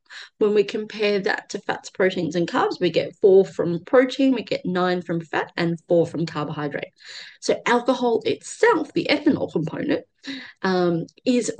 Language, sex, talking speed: English, female, 160 wpm